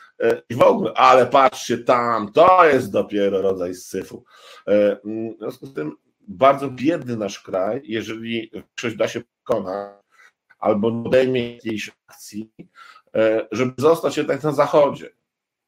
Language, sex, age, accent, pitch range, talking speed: Polish, male, 50-69, native, 110-130 Hz, 125 wpm